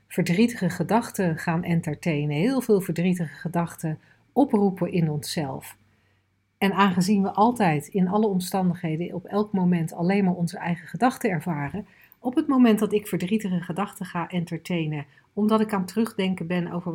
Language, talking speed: Dutch, 150 wpm